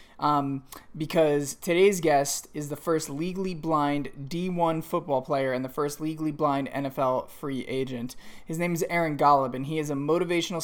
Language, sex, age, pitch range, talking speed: English, male, 20-39, 145-175 Hz, 170 wpm